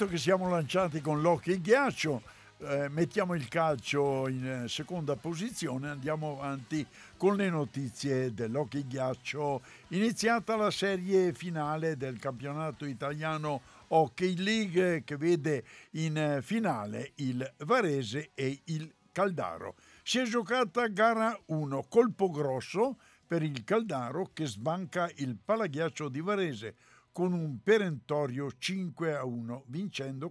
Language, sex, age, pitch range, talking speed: Italian, male, 60-79, 130-180 Hz, 120 wpm